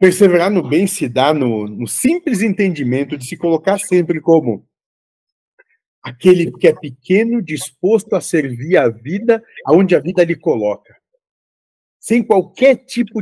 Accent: Brazilian